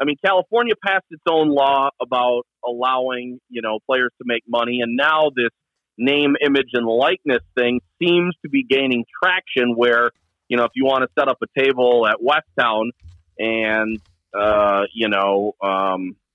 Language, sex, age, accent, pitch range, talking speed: English, male, 40-59, American, 110-140 Hz, 170 wpm